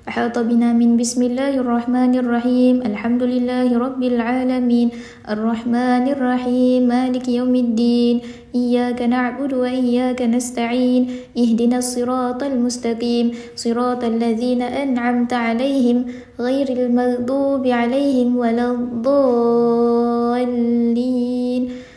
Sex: female